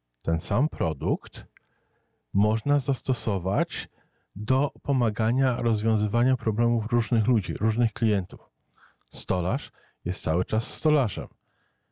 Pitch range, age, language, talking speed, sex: 95-130 Hz, 40-59, Polish, 90 wpm, male